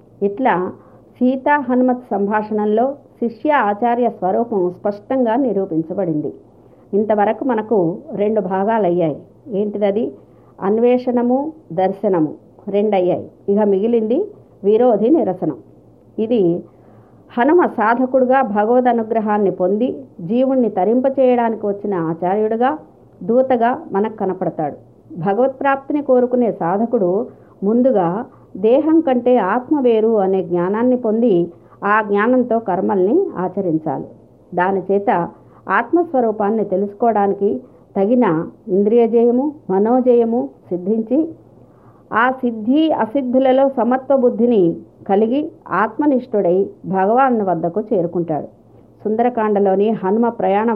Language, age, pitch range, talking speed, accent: Telugu, 50-69, 190-245 Hz, 85 wpm, native